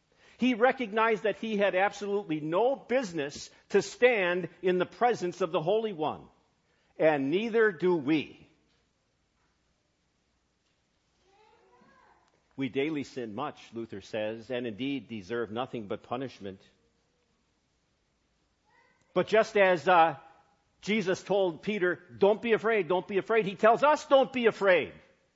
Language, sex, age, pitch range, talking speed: English, male, 50-69, 155-245 Hz, 125 wpm